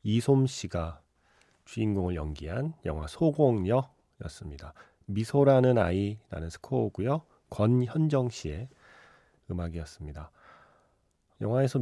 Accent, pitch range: native, 90-130 Hz